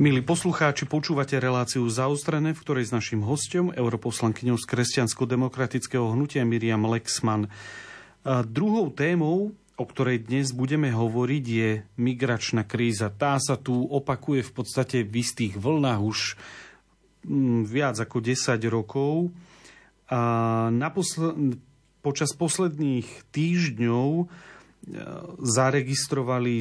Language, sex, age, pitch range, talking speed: Slovak, male, 40-59, 115-140 Hz, 110 wpm